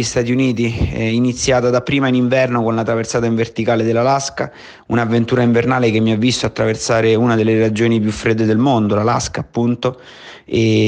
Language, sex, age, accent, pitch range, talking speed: Italian, male, 30-49, native, 110-120 Hz, 170 wpm